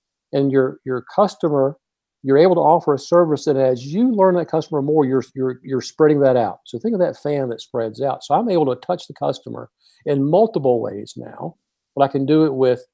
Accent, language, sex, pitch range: American, English, male, 135-175 Hz